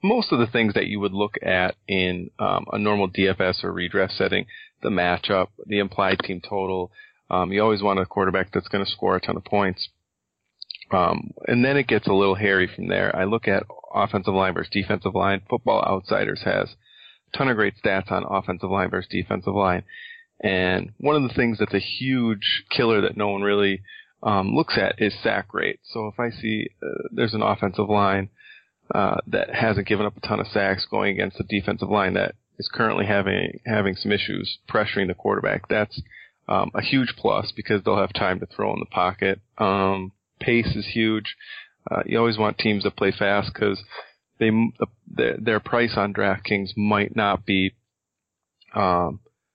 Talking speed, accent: 190 wpm, American